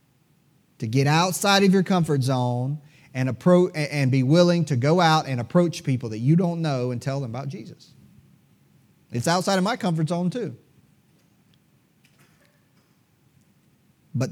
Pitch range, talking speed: 130-165 Hz, 145 wpm